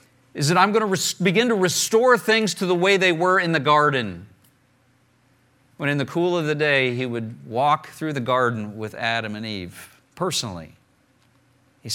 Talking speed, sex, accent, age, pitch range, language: 180 wpm, male, American, 50-69, 130-180 Hz, English